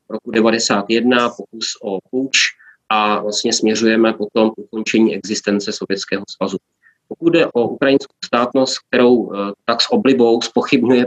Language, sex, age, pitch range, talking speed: Czech, male, 30-49, 110-125 Hz, 130 wpm